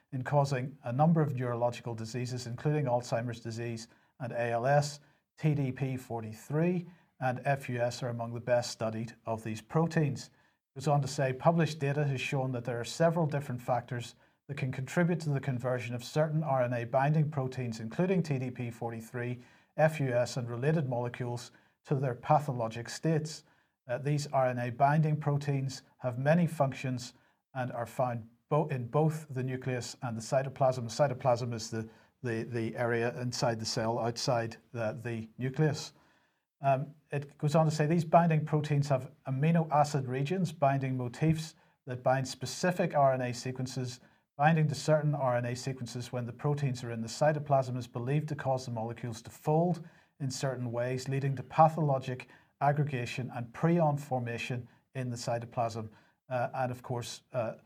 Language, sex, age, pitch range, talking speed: English, male, 40-59, 120-150 Hz, 150 wpm